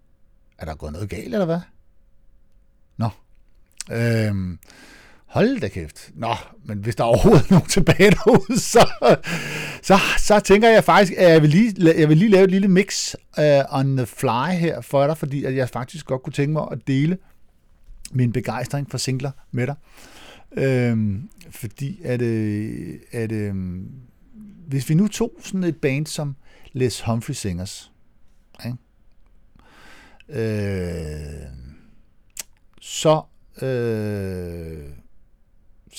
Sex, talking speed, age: male, 130 wpm, 60-79